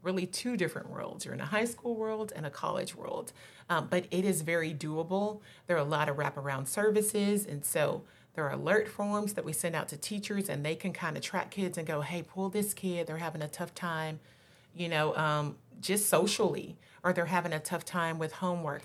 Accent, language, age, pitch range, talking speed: American, English, 30-49, 155-195 Hz, 225 wpm